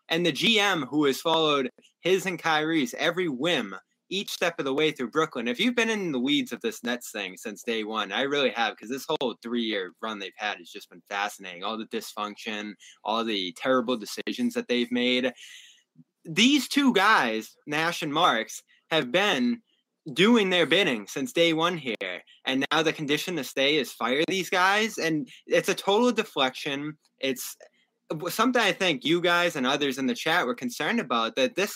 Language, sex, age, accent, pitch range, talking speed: English, male, 20-39, American, 125-195 Hz, 190 wpm